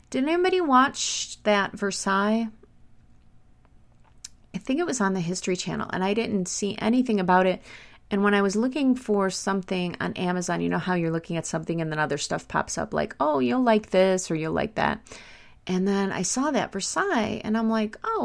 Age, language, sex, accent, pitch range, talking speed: 30-49, English, female, American, 175-215 Hz, 200 wpm